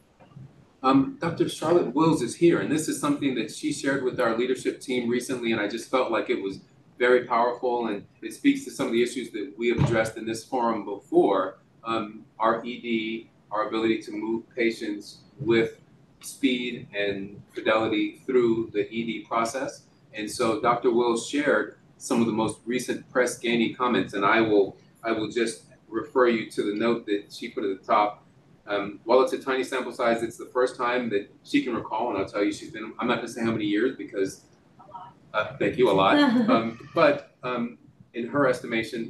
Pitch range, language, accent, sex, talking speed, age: 115-150 Hz, English, American, male, 195 wpm, 30-49